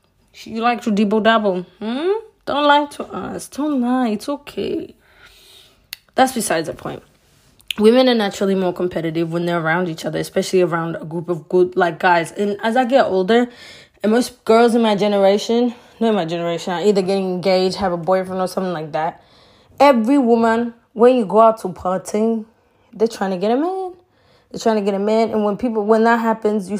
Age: 20-39